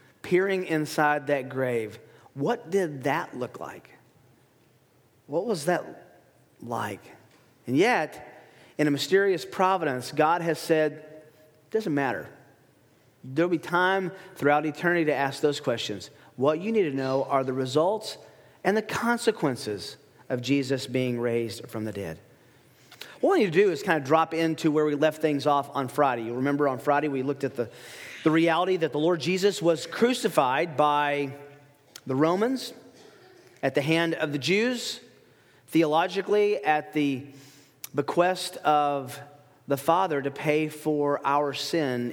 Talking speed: 150 wpm